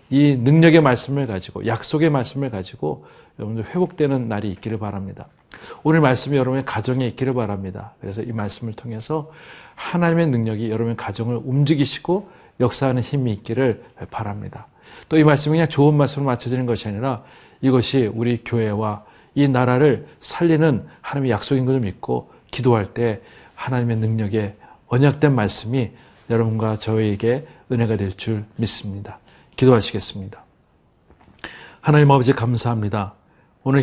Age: 40-59